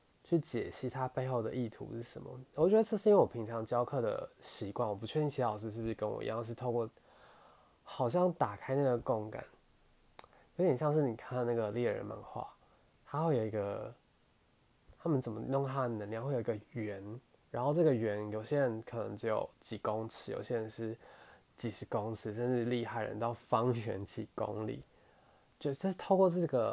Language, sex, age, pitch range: Chinese, male, 20-39, 110-130 Hz